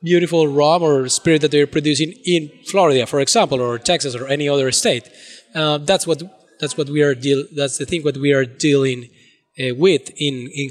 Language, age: English, 20-39